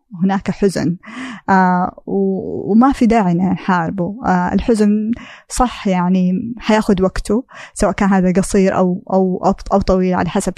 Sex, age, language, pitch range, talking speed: female, 20-39, Arabic, 185-215 Hz, 130 wpm